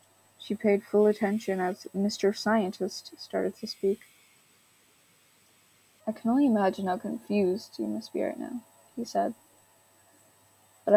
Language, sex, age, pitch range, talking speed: English, female, 20-39, 185-210 Hz, 130 wpm